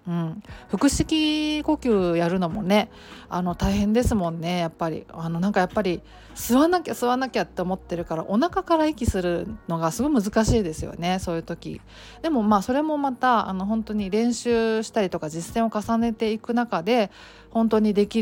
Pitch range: 185-245 Hz